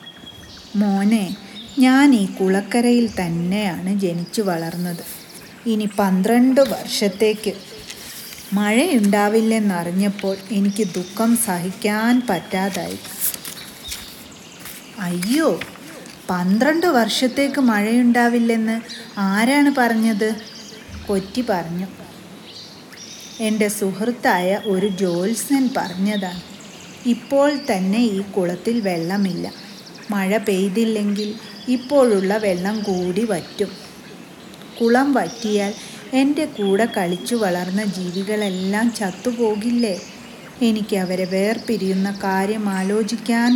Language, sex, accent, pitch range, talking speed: Malayalam, female, native, 190-230 Hz, 70 wpm